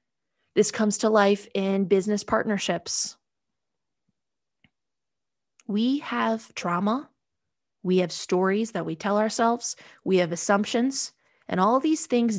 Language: English